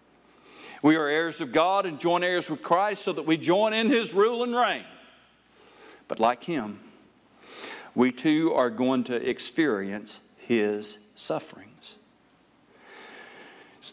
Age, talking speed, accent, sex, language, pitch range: 60-79, 135 wpm, American, male, English, 140-205 Hz